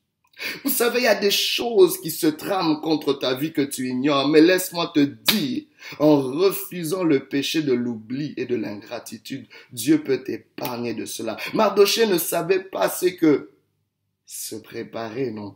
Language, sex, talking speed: French, male, 165 wpm